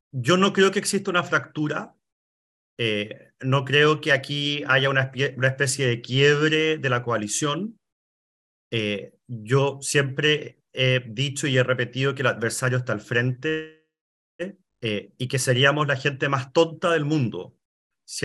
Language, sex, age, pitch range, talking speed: Spanish, male, 40-59, 125-150 Hz, 150 wpm